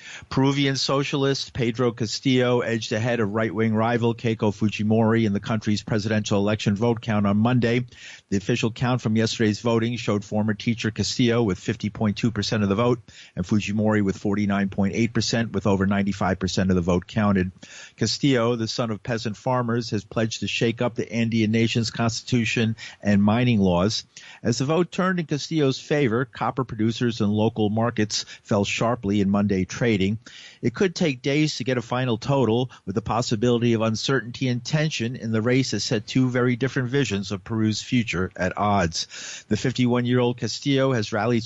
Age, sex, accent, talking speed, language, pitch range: 50-69, male, American, 170 wpm, English, 105-125 Hz